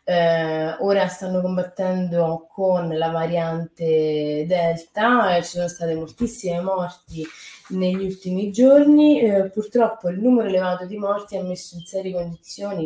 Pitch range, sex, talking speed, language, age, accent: 160-195 Hz, female, 140 wpm, Italian, 20-39, native